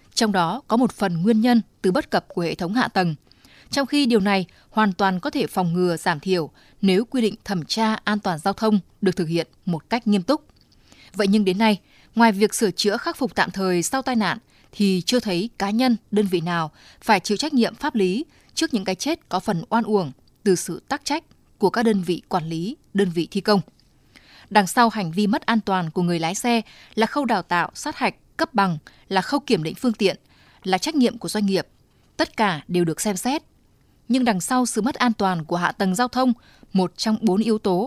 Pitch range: 185-240 Hz